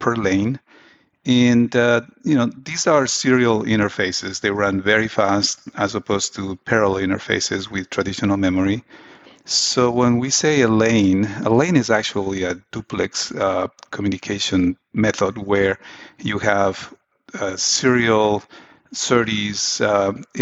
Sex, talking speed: male, 130 wpm